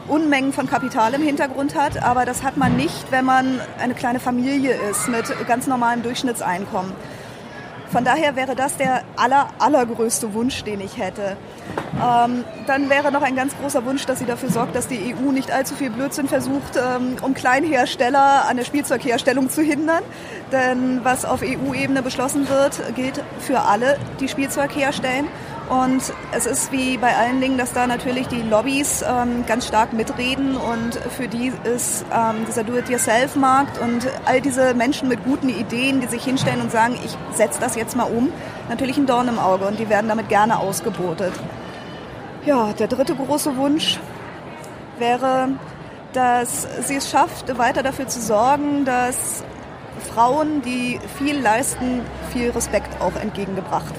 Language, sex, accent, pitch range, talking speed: German, female, German, 235-275 Hz, 165 wpm